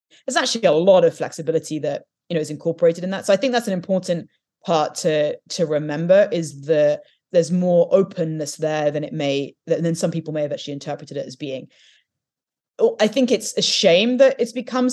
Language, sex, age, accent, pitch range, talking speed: English, female, 20-39, British, 160-195 Hz, 200 wpm